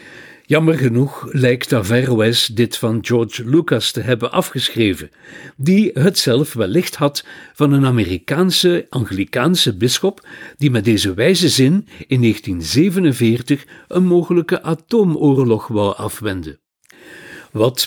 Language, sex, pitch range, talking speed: Dutch, male, 115-155 Hz, 110 wpm